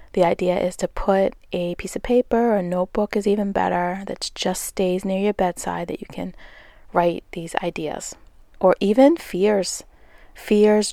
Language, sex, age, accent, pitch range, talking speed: English, female, 20-39, American, 170-200 Hz, 170 wpm